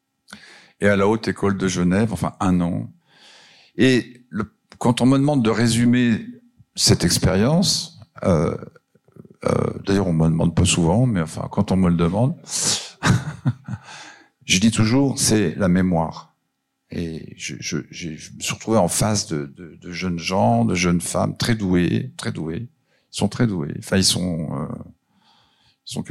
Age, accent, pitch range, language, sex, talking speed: 50-69, French, 90-120 Hz, French, male, 165 wpm